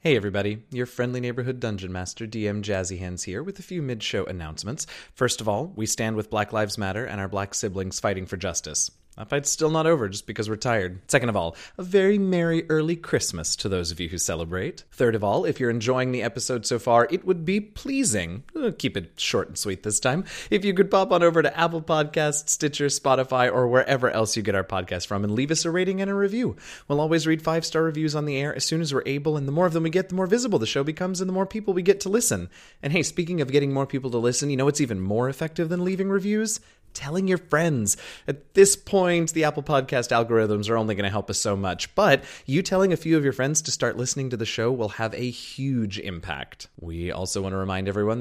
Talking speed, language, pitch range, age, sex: 245 wpm, English, 110-165 Hz, 30-49, male